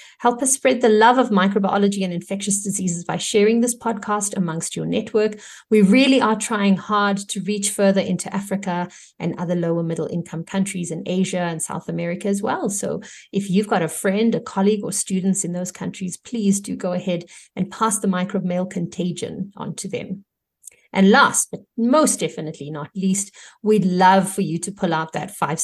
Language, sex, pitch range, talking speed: English, female, 180-230 Hz, 190 wpm